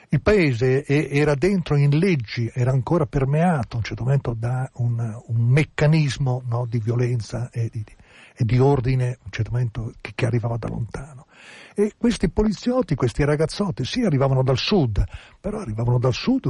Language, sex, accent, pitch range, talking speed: Italian, male, native, 115-150 Hz, 175 wpm